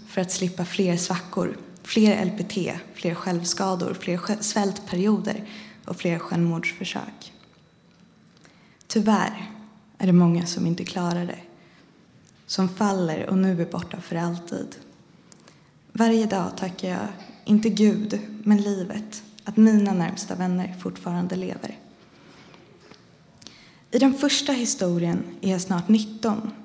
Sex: female